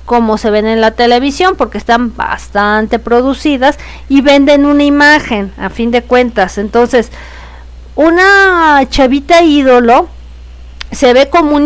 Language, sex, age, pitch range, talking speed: Spanish, female, 40-59, 225-290 Hz, 130 wpm